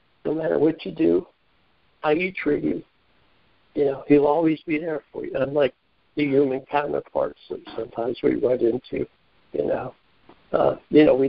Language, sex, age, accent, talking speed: English, male, 60-79, American, 170 wpm